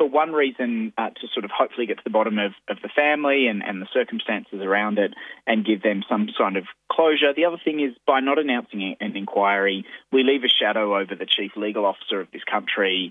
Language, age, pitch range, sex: English, 20-39, 95-125 Hz, male